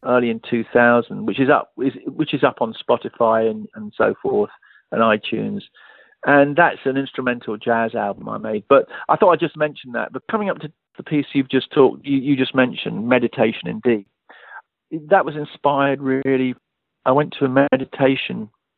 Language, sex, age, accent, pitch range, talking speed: English, male, 50-69, British, 115-140 Hz, 180 wpm